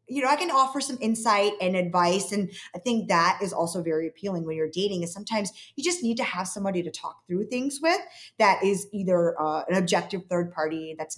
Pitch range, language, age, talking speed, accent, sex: 170-220 Hz, English, 20-39, 225 wpm, American, female